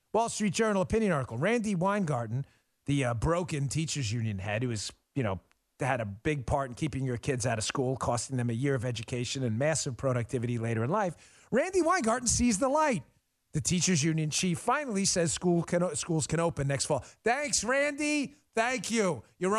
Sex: male